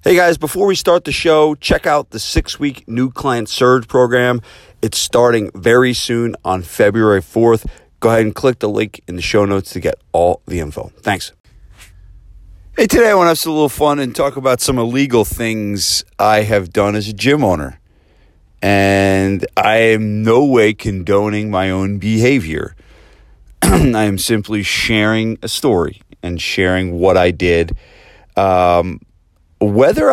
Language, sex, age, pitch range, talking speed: English, male, 40-59, 90-120 Hz, 165 wpm